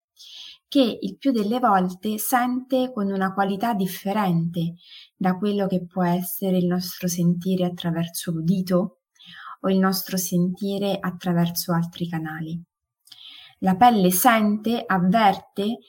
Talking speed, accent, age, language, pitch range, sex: 115 wpm, native, 20-39, Italian, 180-235 Hz, female